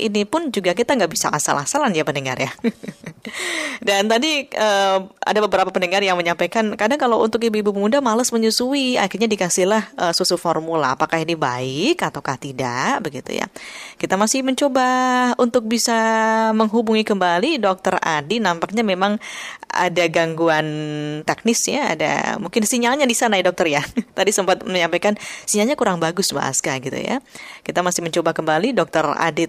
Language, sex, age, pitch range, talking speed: Indonesian, female, 20-39, 155-225 Hz, 155 wpm